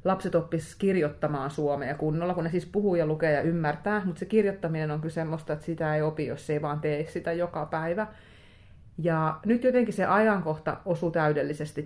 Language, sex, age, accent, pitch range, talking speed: Finnish, female, 30-49, native, 150-180 Hz, 185 wpm